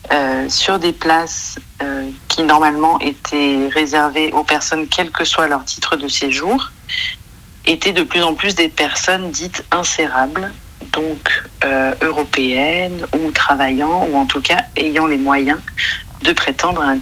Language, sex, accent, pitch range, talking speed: French, female, French, 135-160 Hz, 150 wpm